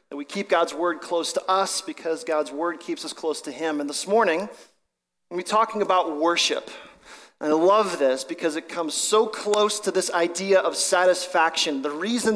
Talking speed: 195 wpm